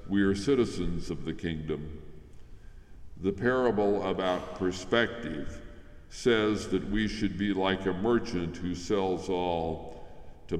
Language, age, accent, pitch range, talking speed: English, 60-79, American, 80-105 Hz, 125 wpm